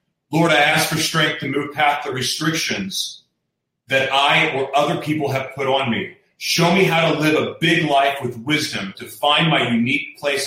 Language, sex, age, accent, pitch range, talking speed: English, male, 30-49, American, 130-165 Hz, 195 wpm